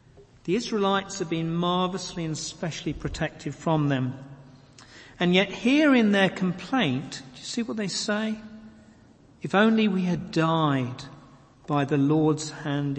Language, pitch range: English, 135-185 Hz